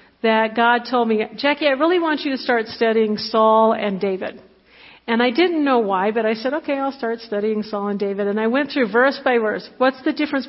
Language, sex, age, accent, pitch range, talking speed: English, female, 50-69, American, 220-275 Hz, 230 wpm